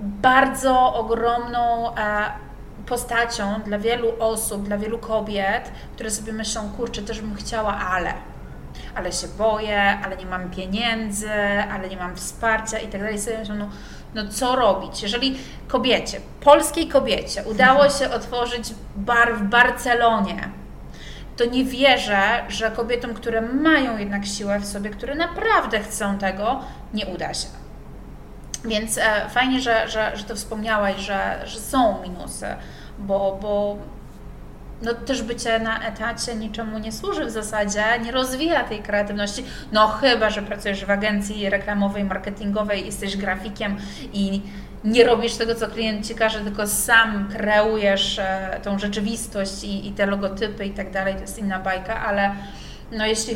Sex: female